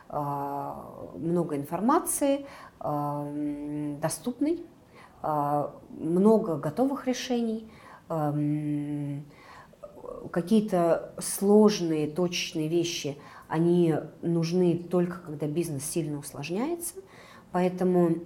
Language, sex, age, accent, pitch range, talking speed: Russian, female, 30-49, native, 150-190 Hz, 60 wpm